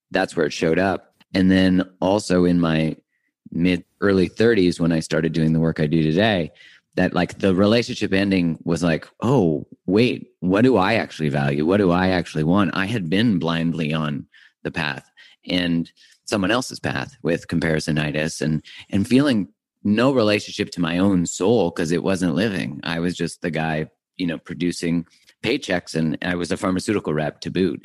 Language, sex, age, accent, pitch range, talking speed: English, male, 30-49, American, 80-95 Hz, 180 wpm